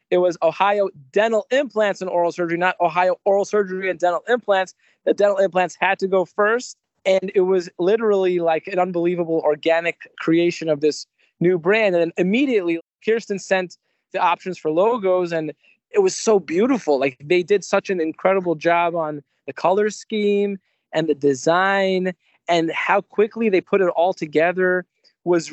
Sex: male